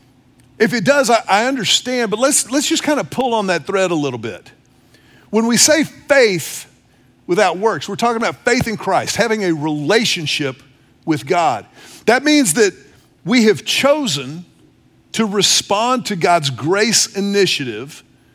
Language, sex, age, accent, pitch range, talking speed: English, male, 50-69, American, 155-225 Hz, 155 wpm